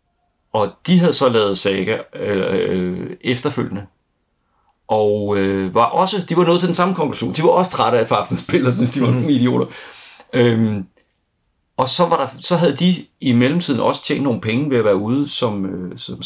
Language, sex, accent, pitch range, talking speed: Danish, male, native, 105-140 Hz, 190 wpm